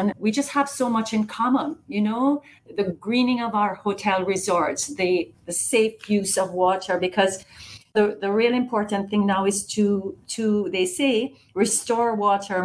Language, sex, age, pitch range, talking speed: English, female, 40-59, 180-215 Hz, 165 wpm